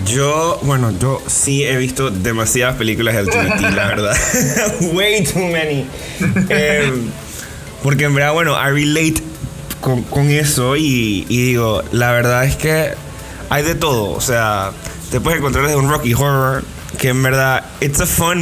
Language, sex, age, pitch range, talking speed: Spanish, male, 20-39, 120-145 Hz, 165 wpm